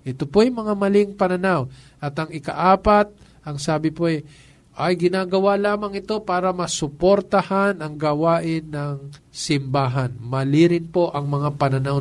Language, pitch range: Filipino, 140-175 Hz